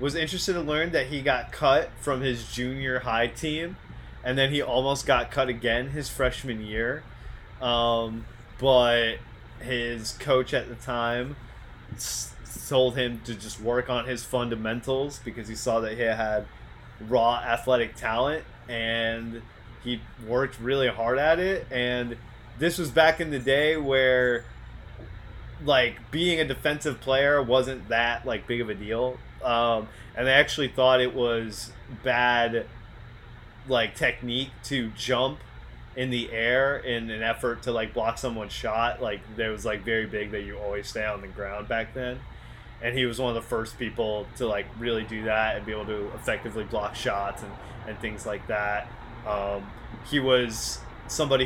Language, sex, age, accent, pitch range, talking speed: English, male, 20-39, American, 110-130 Hz, 165 wpm